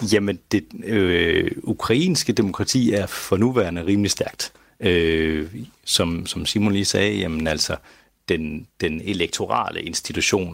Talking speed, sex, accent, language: 125 wpm, male, native, Danish